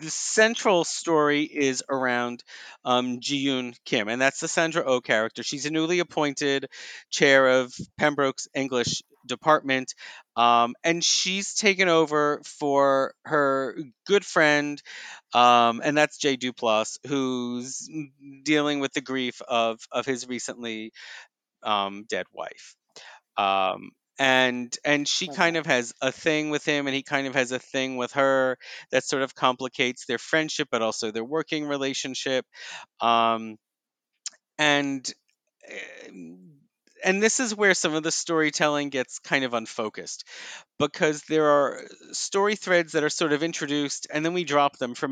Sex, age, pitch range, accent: male, 40-59, 130-155 Hz, American